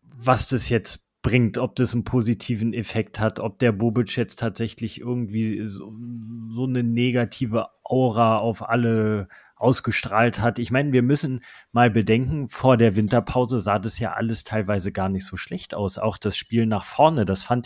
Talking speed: 175 wpm